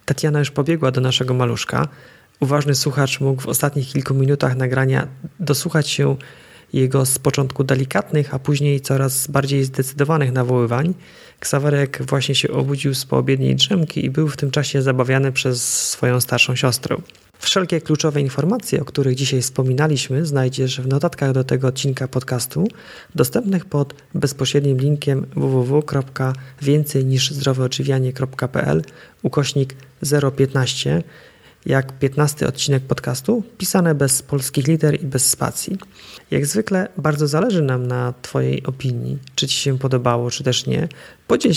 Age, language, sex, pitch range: 30-49, Polish, male, 130-150 Hz